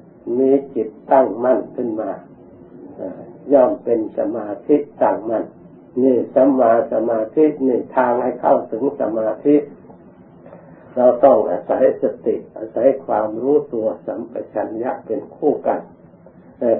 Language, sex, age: Thai, male, 60-79